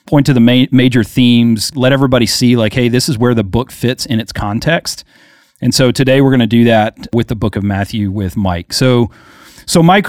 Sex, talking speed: male, 225 wpm